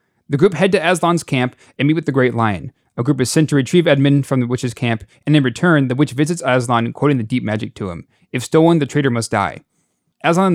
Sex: male